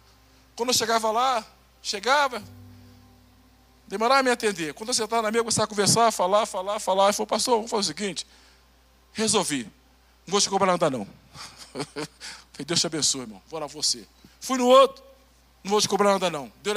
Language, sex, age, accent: Portuguese, male, 50-69, Brazilian